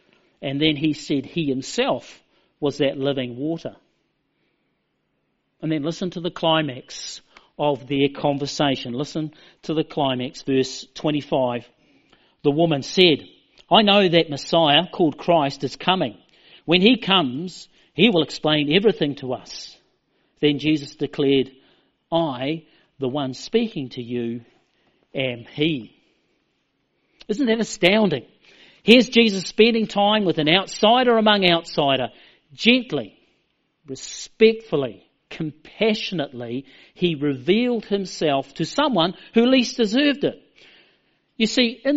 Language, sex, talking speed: English, male, 120 wpm